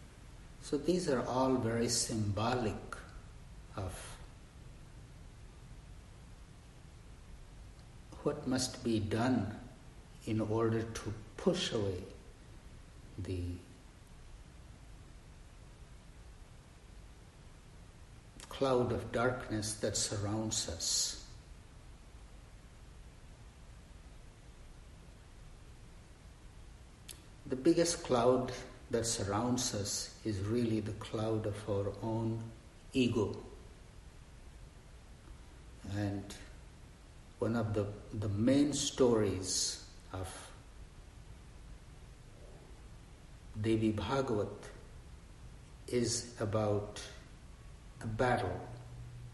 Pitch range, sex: 105-120 Hz, male